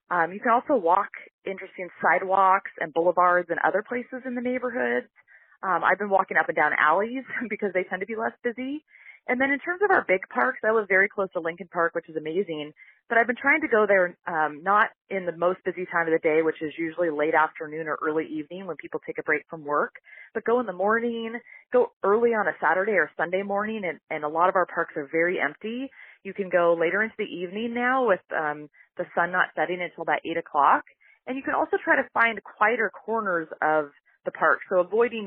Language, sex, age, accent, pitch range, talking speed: English, female, 30-49, American, 160-230 Hz, 230 wpm